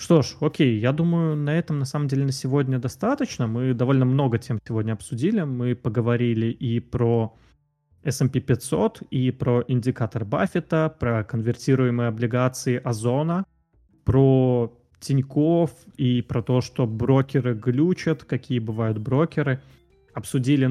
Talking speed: 130 wpm